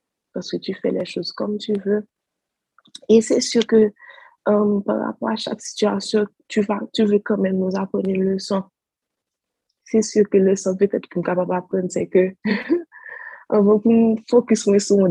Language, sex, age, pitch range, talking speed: French, female, 20-39, 180-215 Hz, 180 wpm